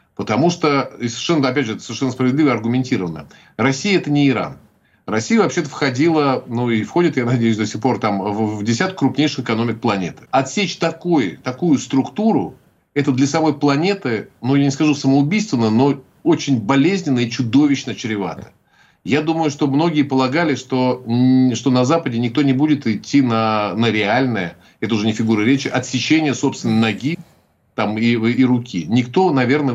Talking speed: 160 wpm